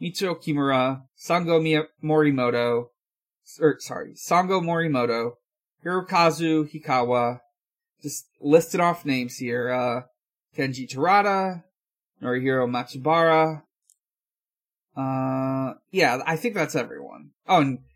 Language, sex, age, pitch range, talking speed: English, male, 20-39, 140-215 Hz, 95 wpm